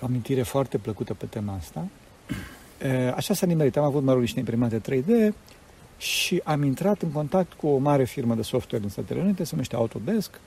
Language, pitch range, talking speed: Romanian, 130-190 Hz, 200 wpm